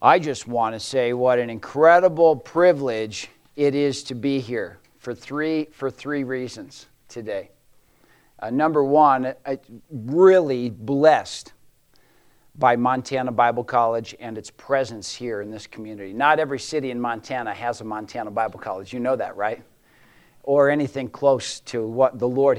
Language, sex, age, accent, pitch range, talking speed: English, male, 50-69, American, 120-140 Hz, 150 wpm